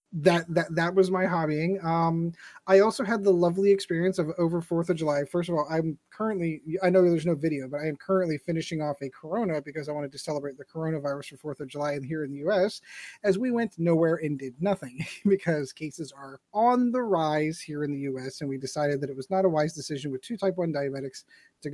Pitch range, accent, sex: 150-195 Hz, American, male